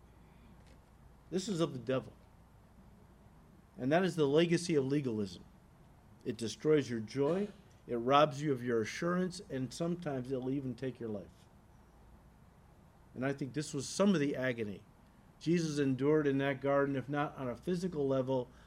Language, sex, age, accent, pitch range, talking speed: English, male, 50-69, American, 125-160 Hz, 160 wpm